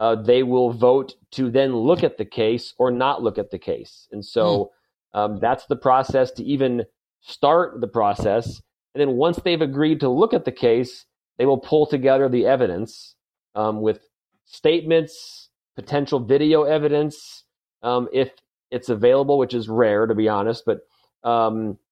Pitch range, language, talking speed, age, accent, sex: 115-145 Hz, English, 165 wpm, 40-59, American, male